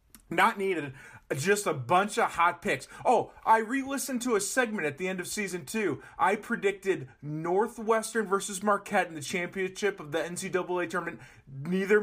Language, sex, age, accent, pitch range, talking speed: English, male, 30-49, American, 165-225 Hz, 165 wpm